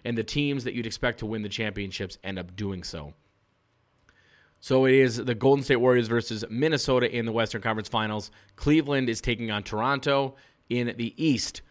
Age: 30-49